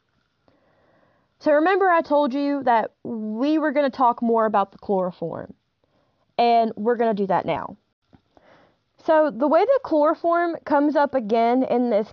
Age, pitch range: 20-39, 215-310 Hz